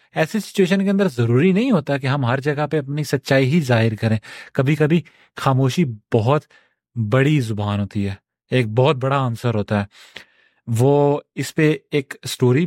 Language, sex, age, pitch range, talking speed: Urdu, male, 30-49, 120-150 Hz, 170 wpm